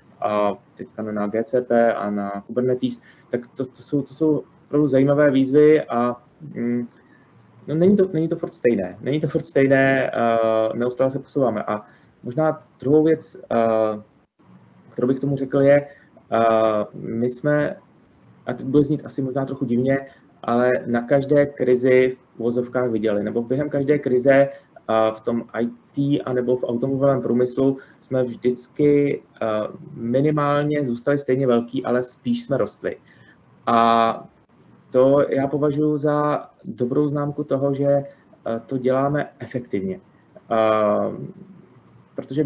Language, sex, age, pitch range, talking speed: Czech, male, 20-39, 115-140 Hz, 125 wpm